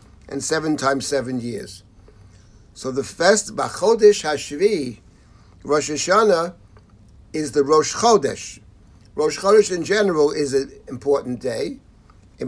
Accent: American